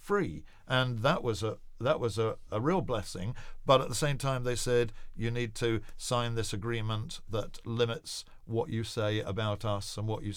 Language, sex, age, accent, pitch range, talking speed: English, male, 50-69, British, 105-120 Hz, 195 wpm